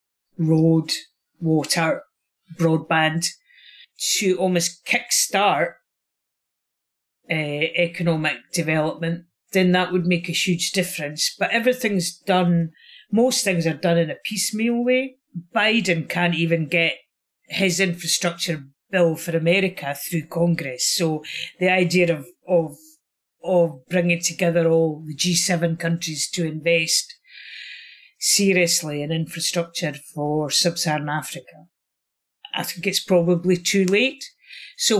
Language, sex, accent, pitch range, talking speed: English, female, British, 165-200 Hz, 110 wpm